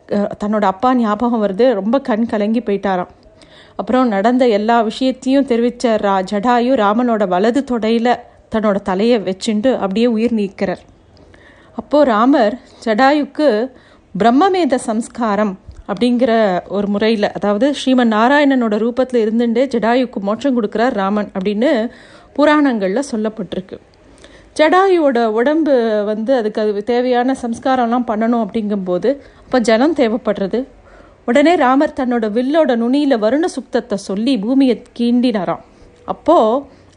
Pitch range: 215-260 Hz